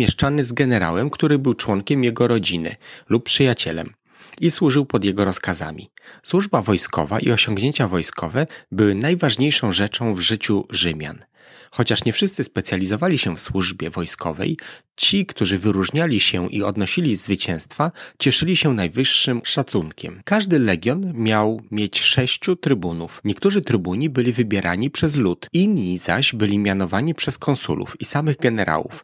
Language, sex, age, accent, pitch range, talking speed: Polish, male, 30-49, native, 100-150 Hz, 135 wpm